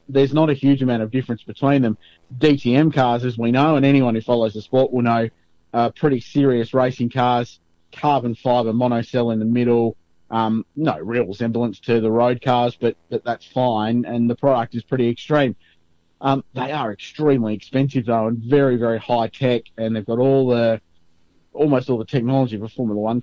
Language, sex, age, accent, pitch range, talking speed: English, male, 30-49, Australian, 110-135 Hz, 195 wpm